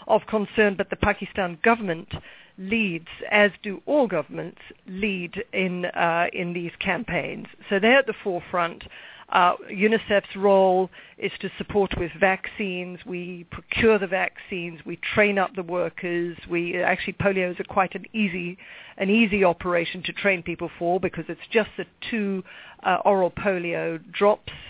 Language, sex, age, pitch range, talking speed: English, female, 50-69, 175-200 Hz, 155 wpm